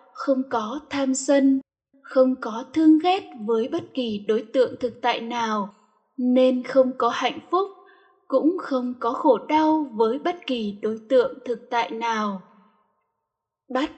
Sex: female